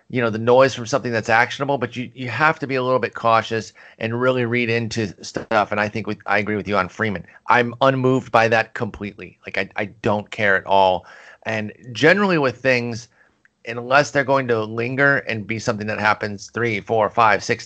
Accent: American